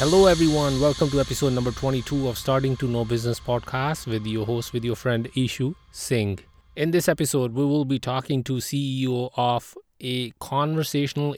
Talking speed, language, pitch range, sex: 175 wpm, English, 120-145 Hz, male